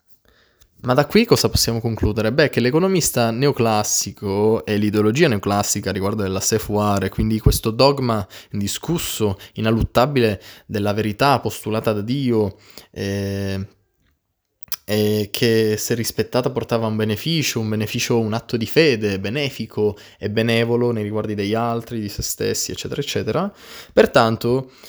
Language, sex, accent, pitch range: Italian, male, native, 100-125 Hz